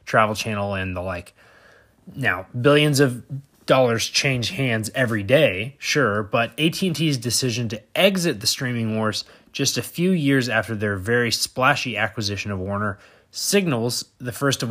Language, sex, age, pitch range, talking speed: English, male, 20-39, 110-135 Hz, 150 wpm